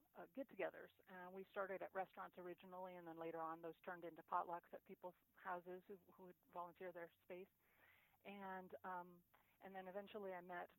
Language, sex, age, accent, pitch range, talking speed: English, female, 40-59, American, 180-205 Hz, 170 wpm